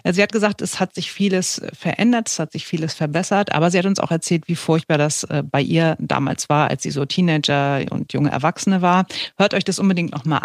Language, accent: German, German